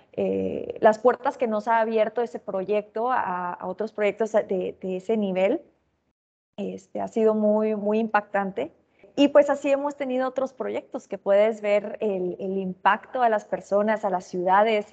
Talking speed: 170 wpm